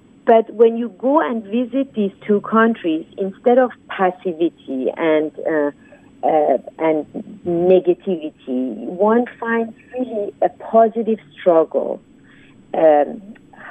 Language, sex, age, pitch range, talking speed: English, female, 50-69, 175-240 Hz, 105 wpm